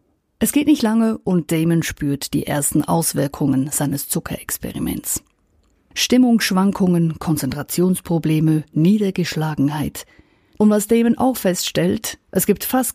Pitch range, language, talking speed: 160-220 Hz, German, 105 wpm